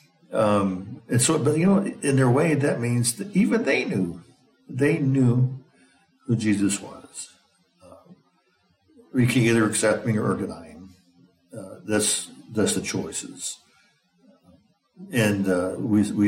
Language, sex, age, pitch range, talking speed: English, male, 60-79, 95-125 Hz, 135 wpm